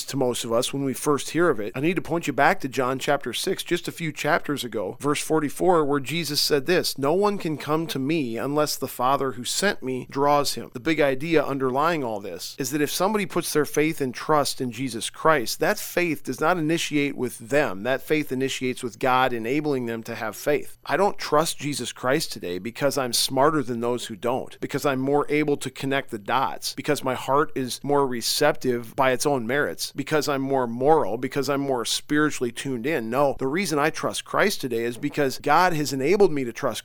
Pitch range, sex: 130-150 Hz, male